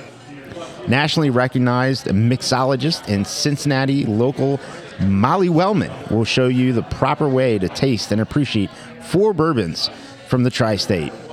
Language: English